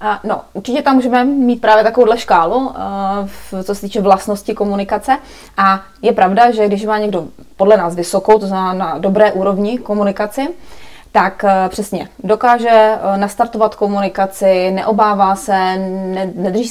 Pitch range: 190-215 Hz